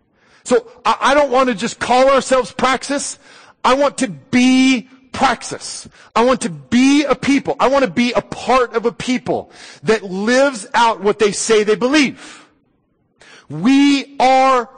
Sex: male